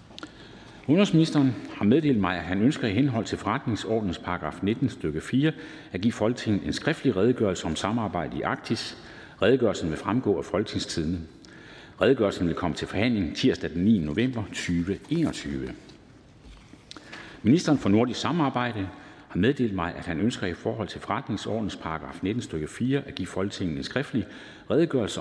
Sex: male